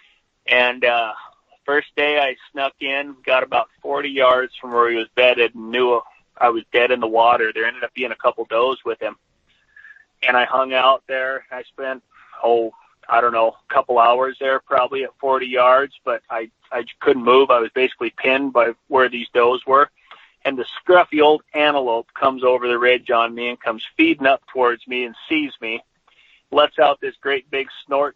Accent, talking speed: American, 195 wpm